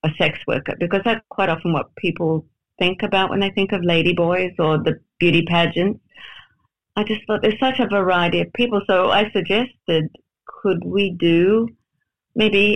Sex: female